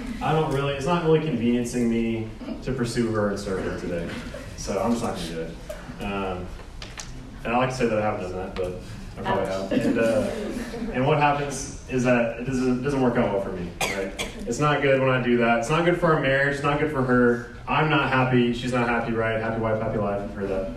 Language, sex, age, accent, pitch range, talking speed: English, male, 30-49, American, 115-140 Hz, 255 wpm